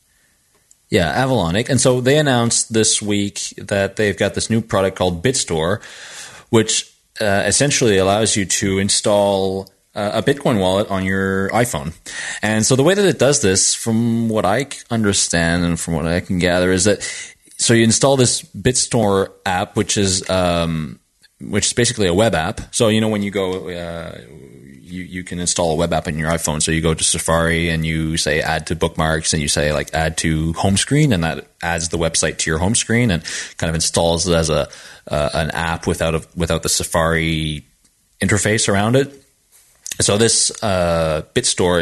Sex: male